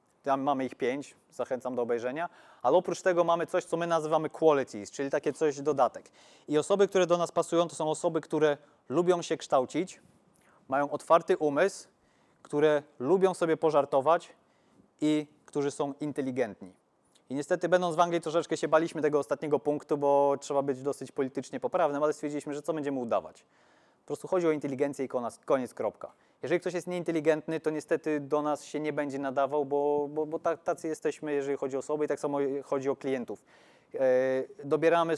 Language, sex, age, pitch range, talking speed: Polish, male, 30-49, 140-160 Hz, 175 wpm